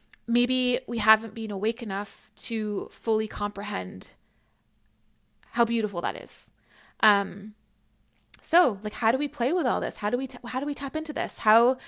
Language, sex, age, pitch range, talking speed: English, female, 20-39, 200-245 Hz, 165 wpm